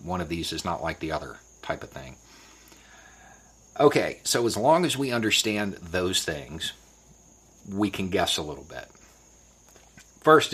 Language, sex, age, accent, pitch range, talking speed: English, male, 40-59, American, 85-100 Hz, 155 wpm